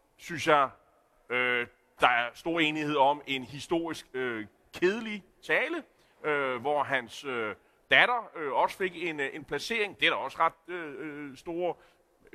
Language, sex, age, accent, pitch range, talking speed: Danish, male, 30-49, native, 140-180 Hz, 155 wpm